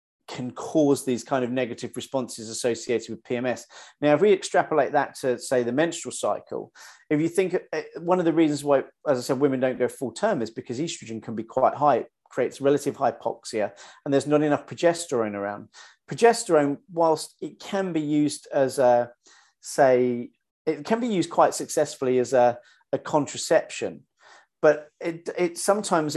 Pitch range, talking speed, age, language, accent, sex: 125-160 Hz, 175 wpm, 40-59, English, British, male